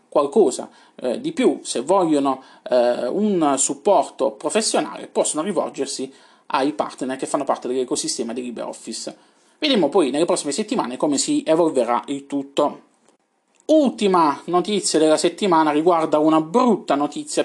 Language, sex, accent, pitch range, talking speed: Italian, male, native, 145-235 Hz, 125 wpm